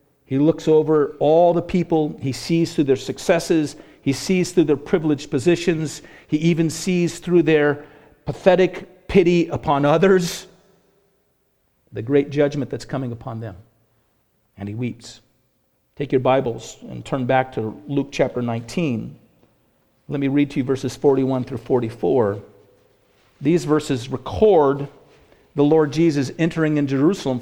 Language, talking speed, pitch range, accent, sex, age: English, 140 wpm, 130-155 Hz, American, male, 50-69